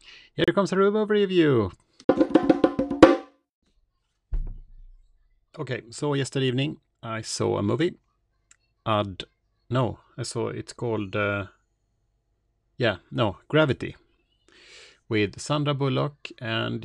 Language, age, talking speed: Swedish, 30-49, 95 wpm